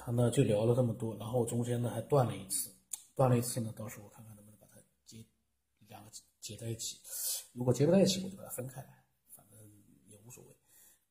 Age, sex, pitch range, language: 50-69, male, 110-130 Hz, Chinese